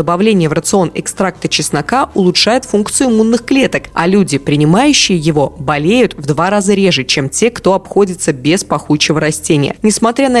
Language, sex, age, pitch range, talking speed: Russian, female, 20-39, 170-225 Hz, 155 wpm